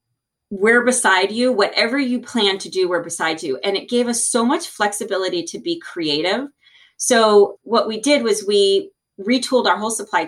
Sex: female